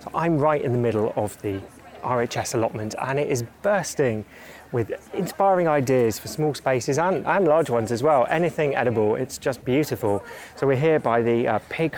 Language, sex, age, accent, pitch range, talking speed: English, male, 30-49, British, 115-150 Hz, 190 wpm